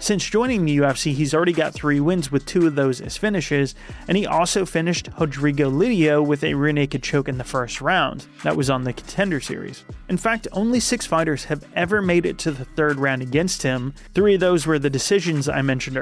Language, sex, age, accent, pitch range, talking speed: English, male, 30-49, American, 140-175 Hz, 215 wpm